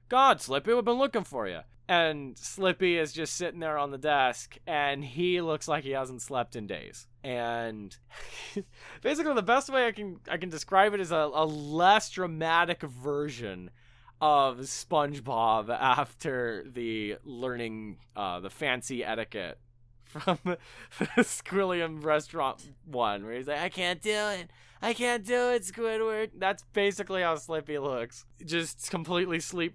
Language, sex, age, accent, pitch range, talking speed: English, male, 20-39, American, 120-175 Hz, 155 wpm